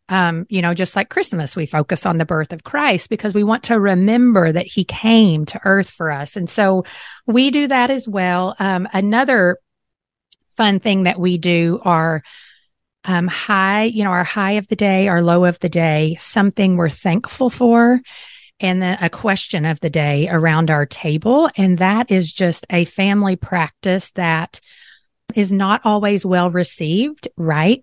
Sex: female